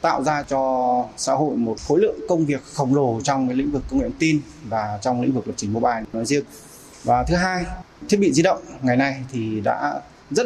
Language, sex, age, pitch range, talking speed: Vietnamese, male, 20-39, 125-165 Hz, 235 wpm